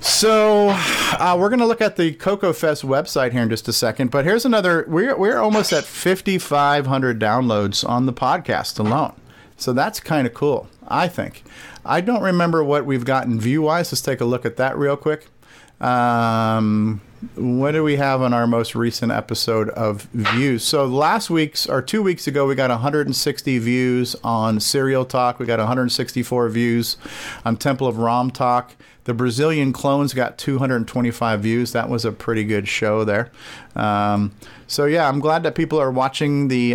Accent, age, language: American, 50-69, English